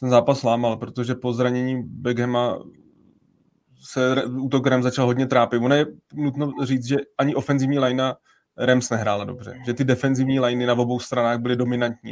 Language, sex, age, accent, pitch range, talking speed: Czech, male, 20-39, native, 120-130 Hz, 165 wpm